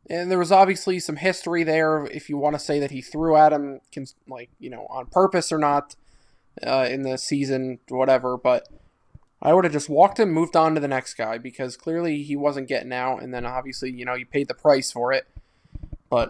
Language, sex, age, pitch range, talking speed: English, male, 20-39, 130-155 Hz, 220 wpm